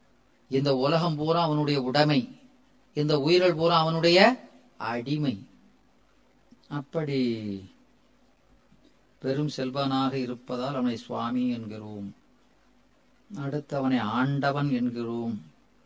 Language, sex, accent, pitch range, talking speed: Tamil, female, native, 130-155 Hz, 80 wpm